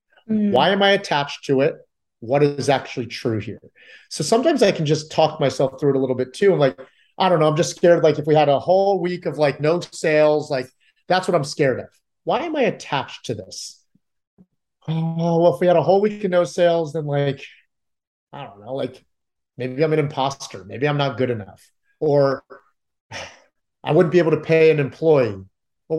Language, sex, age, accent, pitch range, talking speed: English, male, 30-49, American, 130-170 Hz, 210 wpm